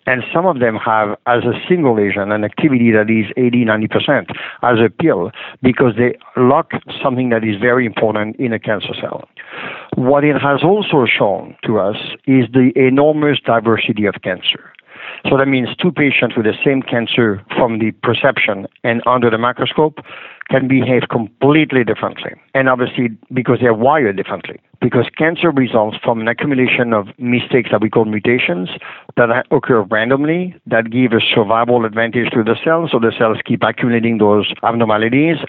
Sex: male